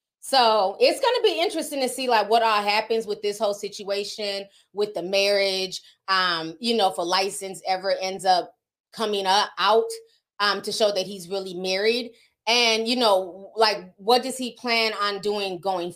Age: 20-39